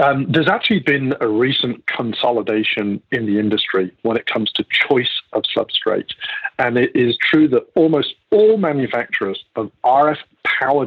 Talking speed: 155 wpm